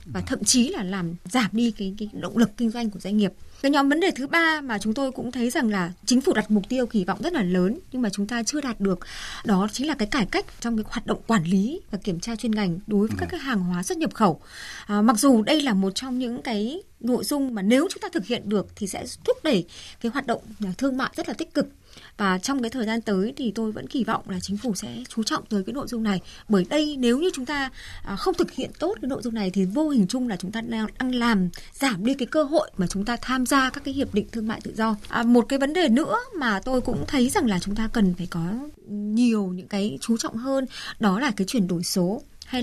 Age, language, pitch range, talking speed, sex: 20-39, Vietnamese, 205-275 Hz, 275 wpm, female